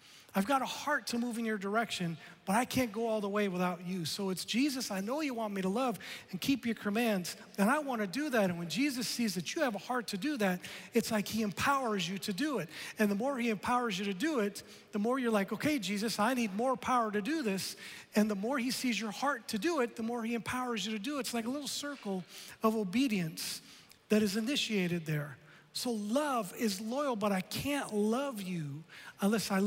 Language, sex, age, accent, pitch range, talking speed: English, male, 40-59, American, 185-245 Hz, 240 wpm